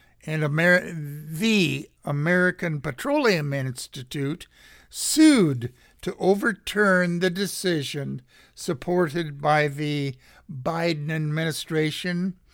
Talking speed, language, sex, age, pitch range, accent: 70 wpm, English, male, 60-79, 130-175 Hz, American